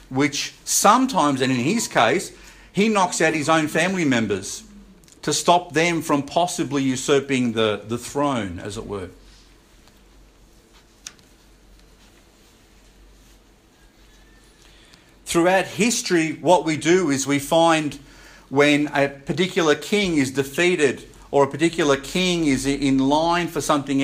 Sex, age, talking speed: male, 50-69, 120 wpm